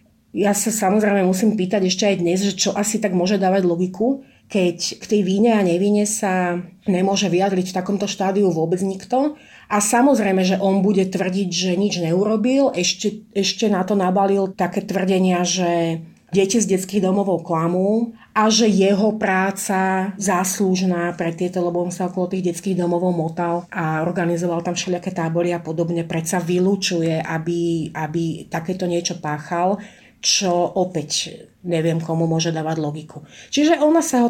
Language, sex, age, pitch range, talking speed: Slovak, female, 30-49, 175-210 Hz, 160 wpm